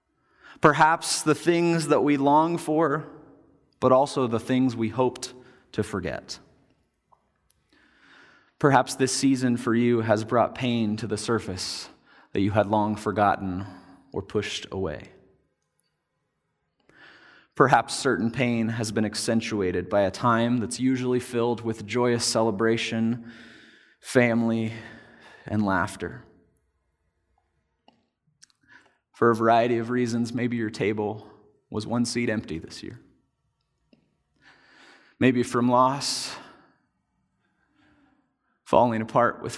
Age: 30-49